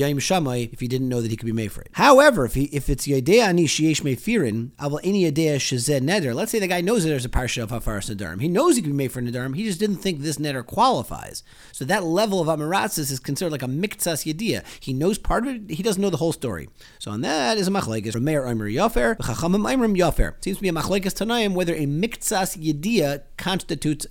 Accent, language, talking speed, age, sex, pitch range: American, English, 230 wpm, 40-59, male, 125-180 Hz